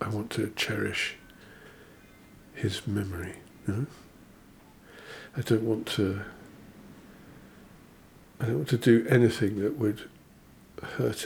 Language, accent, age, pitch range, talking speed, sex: English, British, 50-69, 100-130 Hz, 110 wpm, male